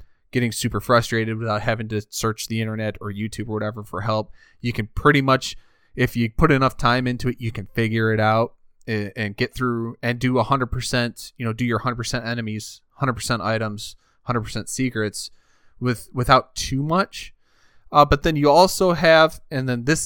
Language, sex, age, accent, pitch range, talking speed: English, male, 20-39, American, 110-135 Hz, 180 wpm